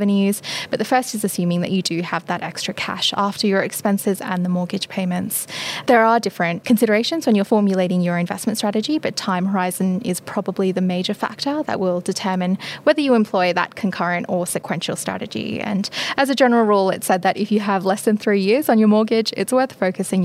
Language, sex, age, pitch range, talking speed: English, female, 10-29, 185-220 Hz, 205 wpm